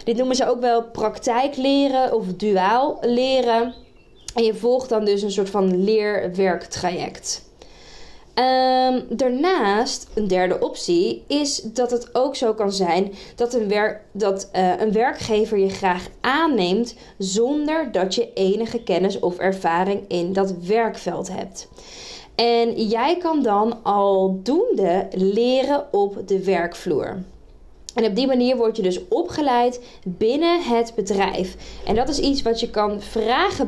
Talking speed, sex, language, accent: 145 wpm, female, Dutch, Dutch